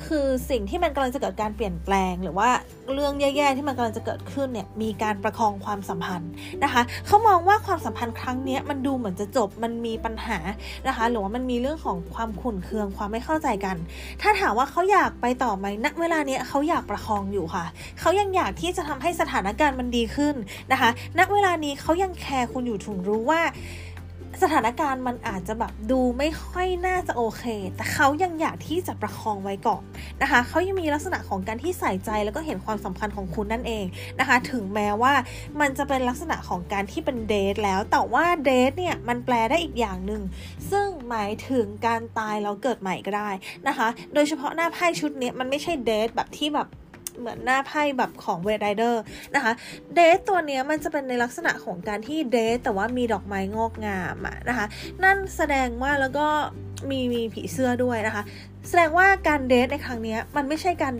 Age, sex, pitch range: 20-39, female, 215-300 Hz